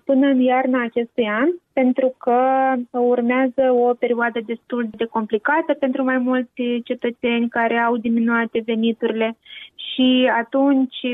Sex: female